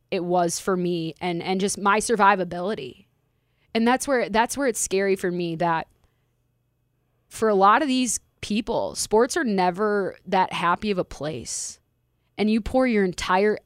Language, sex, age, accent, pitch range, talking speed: English, female, 20-39, American, 170-215 Hz, 165 wpm